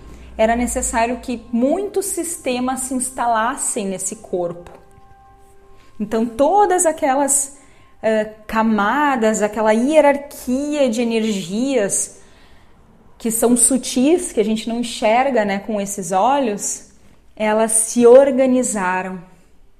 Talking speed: 95 wpm